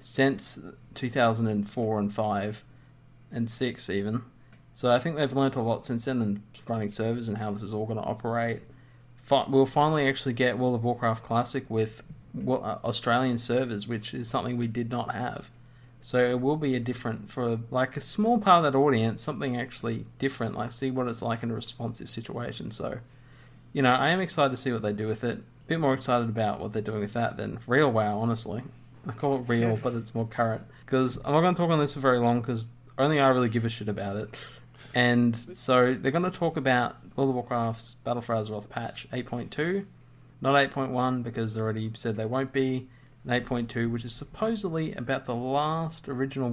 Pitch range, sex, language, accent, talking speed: 115-130 Hz, male, English, Australian, 205 wpm